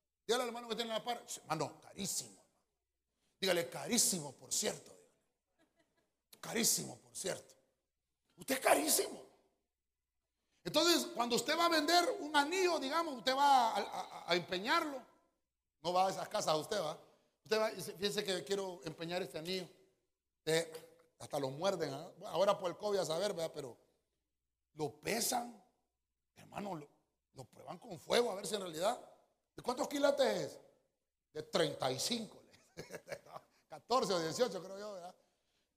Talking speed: 150 wpm